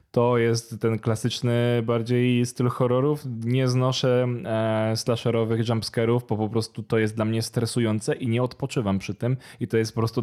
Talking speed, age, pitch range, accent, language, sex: 170 wpm, 20-39, 110-125 Hz, native, Polish, male